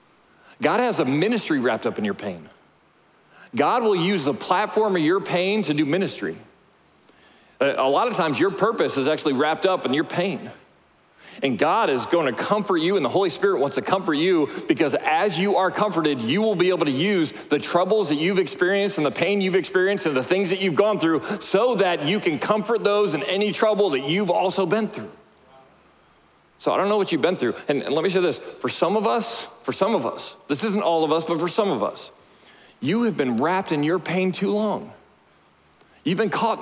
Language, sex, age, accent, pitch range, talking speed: English, male, 40-59, American, 170-210 Hz, 220 wpm